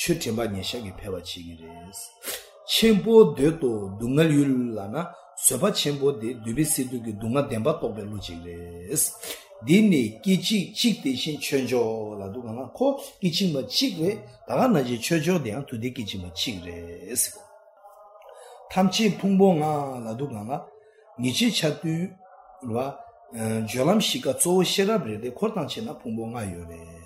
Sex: male